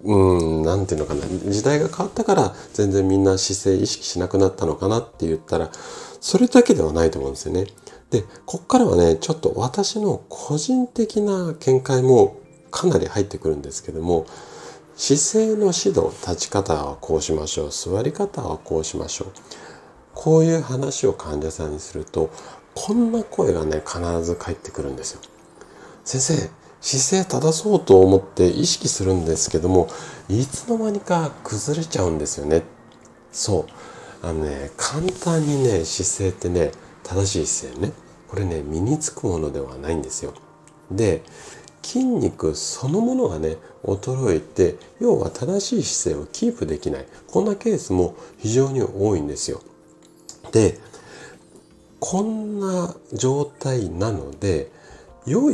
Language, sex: Japanese, male